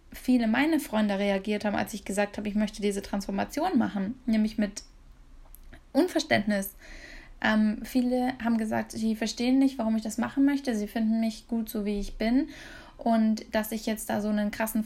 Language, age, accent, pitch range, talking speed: German, 10-29, German, 210-250 Hz, 180 wpm